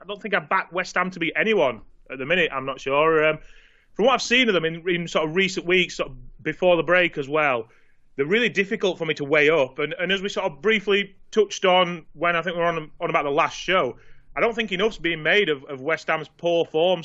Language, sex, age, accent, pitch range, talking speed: English, male, 30-49, British, 150-185 Hz, 270 wpm